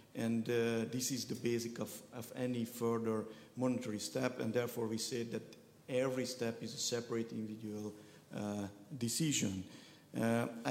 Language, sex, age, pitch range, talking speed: Hungarian, male, 50-69, 110-130 Hz, 145 wpm